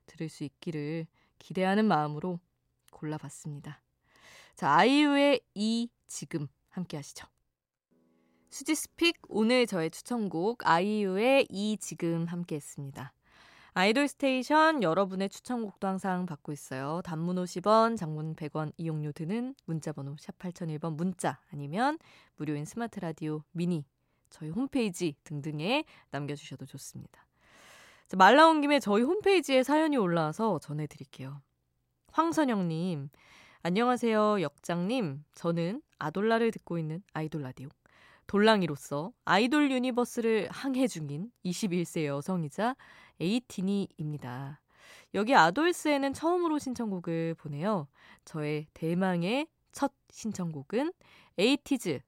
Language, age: Korean, 20-39